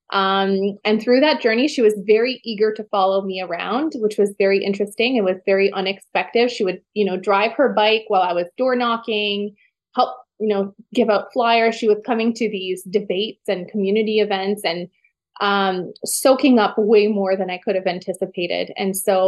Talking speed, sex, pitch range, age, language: 190 wpm, female, 195-225 Hz, 20-39, English